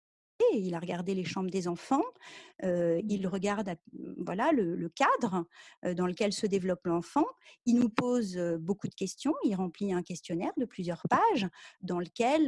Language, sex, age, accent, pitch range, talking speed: French, female, 40-59, French, 185-265 Hz, 165 wpm